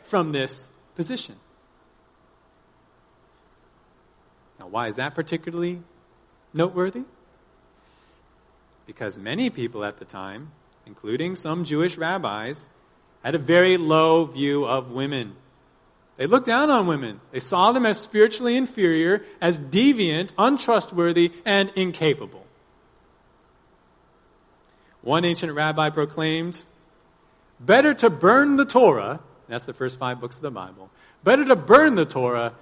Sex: male